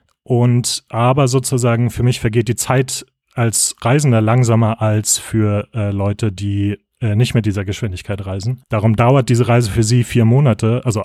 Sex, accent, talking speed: male, German, 170 wpm